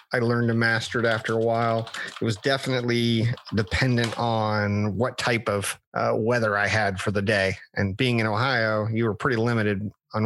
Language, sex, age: English, male, 30-49